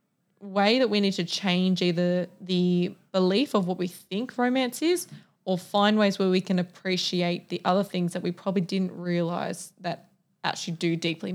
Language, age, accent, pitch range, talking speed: English, 20-39, Australian, 180-205 Hz, 180 wpm